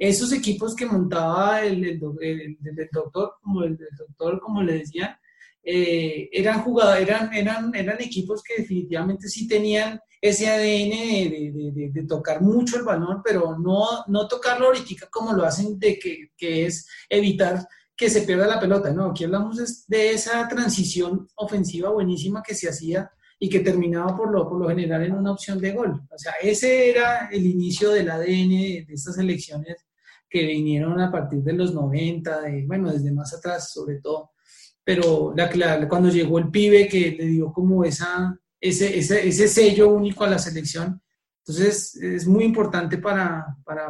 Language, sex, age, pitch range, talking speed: Spanish, male, 30-49, 165-205 Hz, 180 wpm